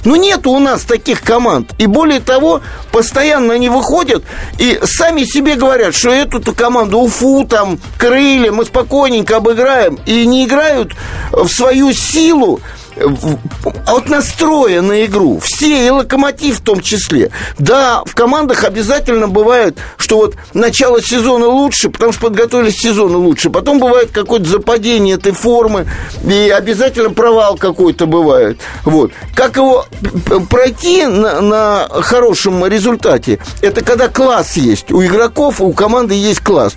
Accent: native